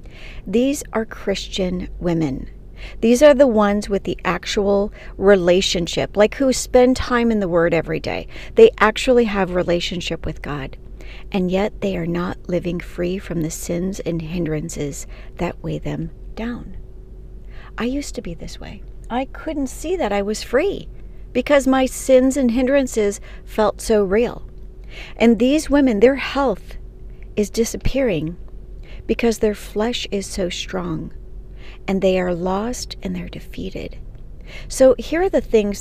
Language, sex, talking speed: English, female, 150 wpm